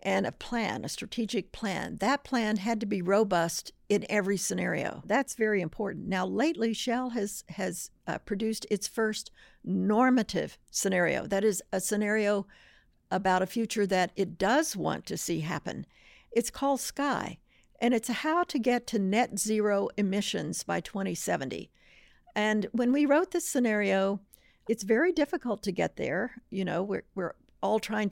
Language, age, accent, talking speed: English, 60-79, American, 160 wpm